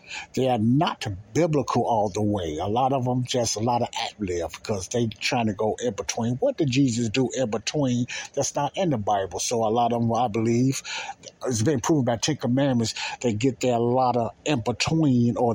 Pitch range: 115-135 Hz